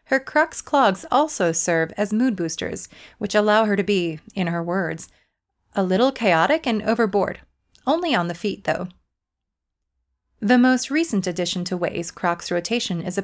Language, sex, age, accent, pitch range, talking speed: English, female, 30-49, American, 175-220 Hz, 165 wpm